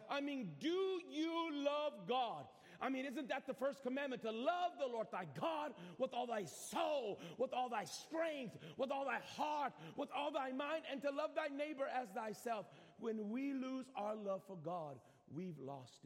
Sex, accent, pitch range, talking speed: male, American, 165-260 Hz, 190 wpm